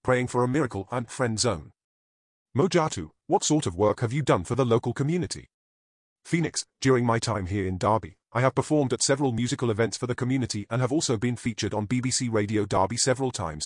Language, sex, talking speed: English, male, 205 wpm